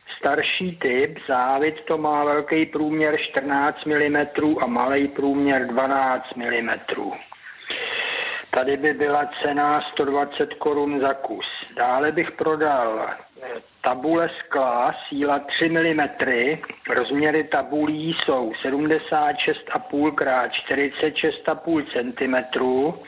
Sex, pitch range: male, 140-165 Hz